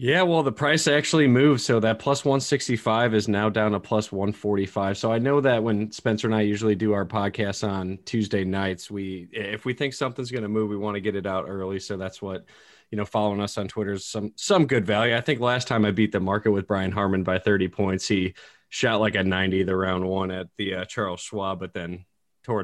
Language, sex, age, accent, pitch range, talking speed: English, male, 20-39, American, 95-115 Hz, 240 wpm